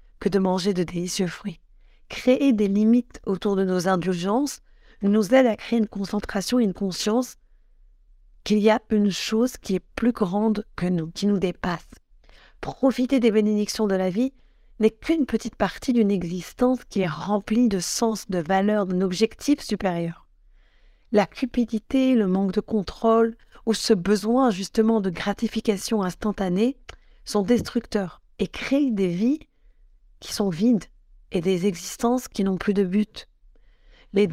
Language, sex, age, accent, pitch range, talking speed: French, female, 40-59, French, 195-230 Hz, 155 wpm